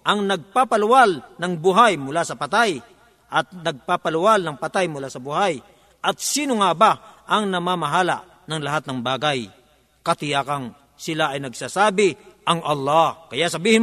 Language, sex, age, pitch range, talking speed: Filipino, male, 50-69, 155-225 Hz, 140 wpm